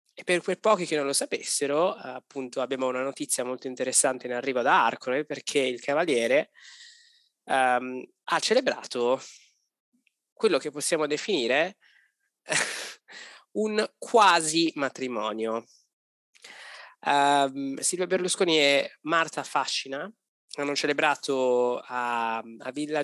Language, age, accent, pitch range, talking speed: Italian, 20-39, native, 125-150 Hz, 110 wpm